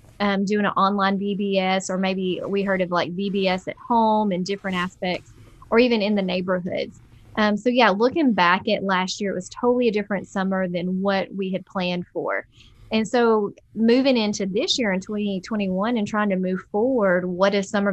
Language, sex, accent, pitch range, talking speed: English, female, American, 185-220 Hz, 195 wpm